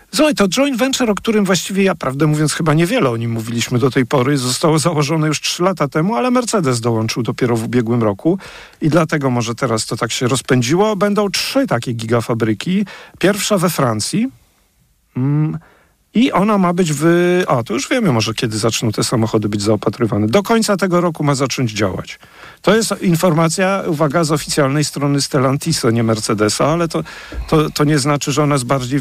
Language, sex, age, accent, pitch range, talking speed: Polish, male, 50-69, native, 130-175 Hz, 180 wpm